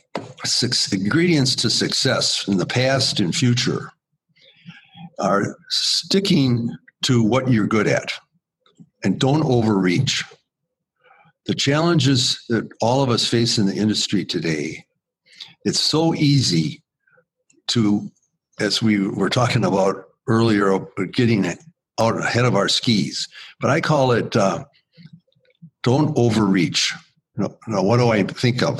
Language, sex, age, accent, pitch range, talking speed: English, male, 60-79, American, 115-155 Hz, 120 wpm